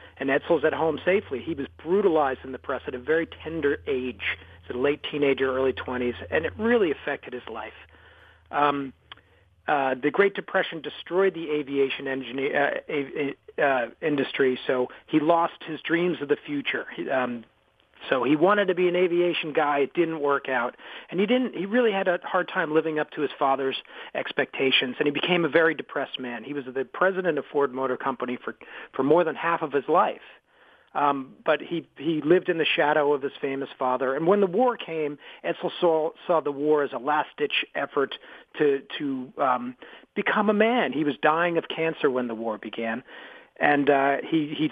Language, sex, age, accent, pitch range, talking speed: English, male, 40-59, American, 135-175 Hz, 190 wpm